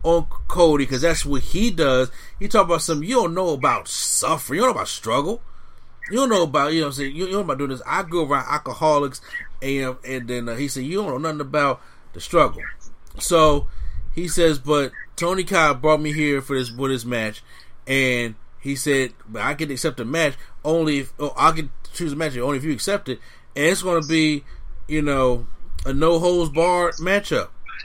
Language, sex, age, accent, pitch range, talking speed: English, male, 30-49, American, 130-160 Hz, 220 wpm